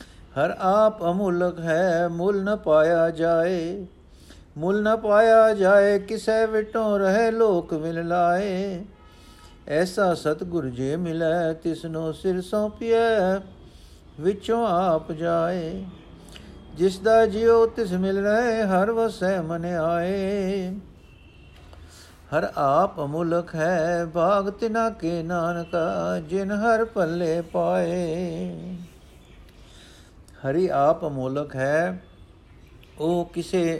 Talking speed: 100 wpm